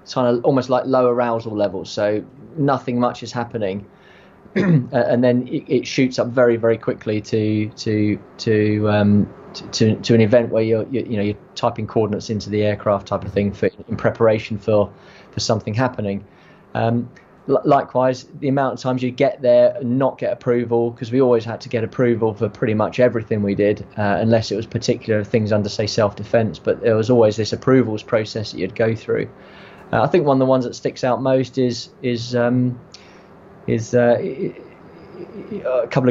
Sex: male